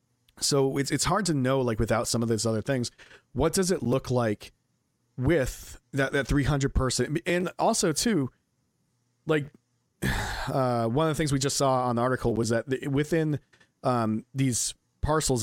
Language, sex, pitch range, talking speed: English, male, 115-140 Hz, 170 wpm